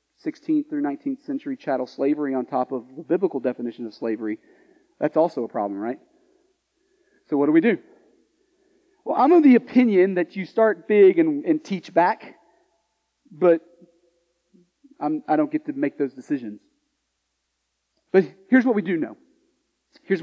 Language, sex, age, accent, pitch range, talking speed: English, male, 30-49, American, 170-275 Hz, 155 wpm